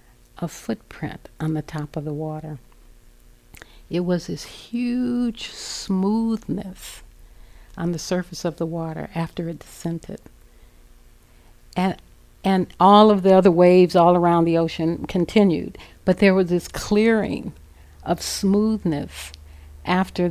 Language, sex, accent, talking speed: English, female, American, 125 wpm